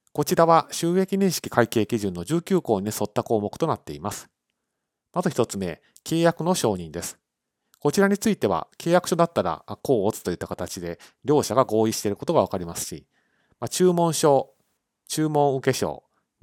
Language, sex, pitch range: Japanese, male, 100-150 Hz